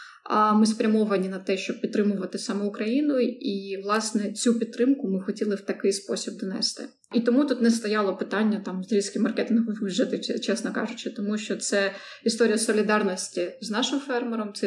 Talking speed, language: 165 wpm, Ukrainian